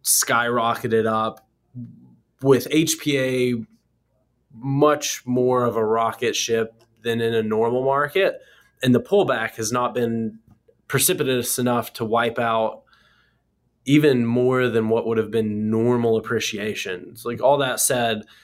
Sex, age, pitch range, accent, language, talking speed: male, 20-39, 105-120 Hz, American, English, 125 wpm